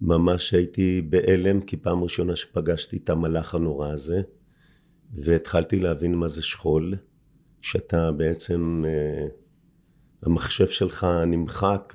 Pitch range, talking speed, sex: 80-100 Hz, 110 wpm, male